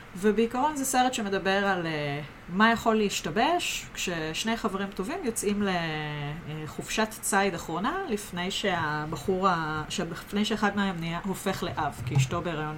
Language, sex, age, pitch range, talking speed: Hebrew, female, 30-49, 170-225 Hz, 120 wpm